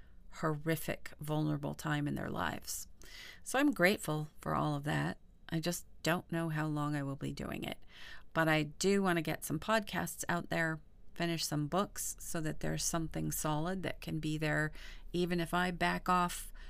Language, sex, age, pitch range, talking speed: English, female, 40-59, 155-175 Hz, 185 wpm